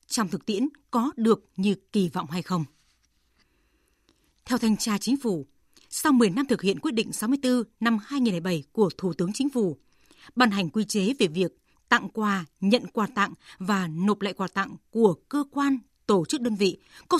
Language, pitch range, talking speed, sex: Vietnamese, 190-255 Hz, 190 wpm, female